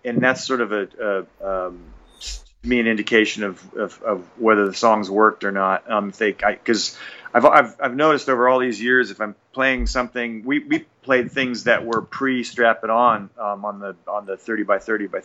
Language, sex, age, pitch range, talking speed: English, male, 40-59, 105-125 Hz, 215 wpm